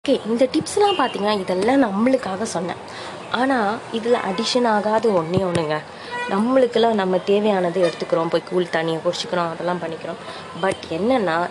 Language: Tamil